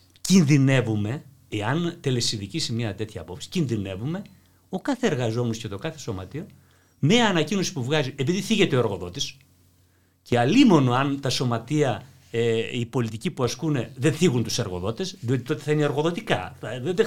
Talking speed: 150 wpm